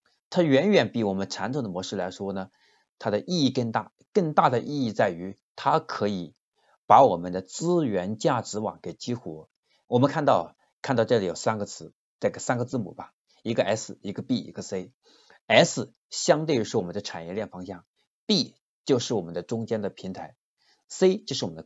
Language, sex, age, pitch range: Chinese, male, 50-69, 95-135 Hz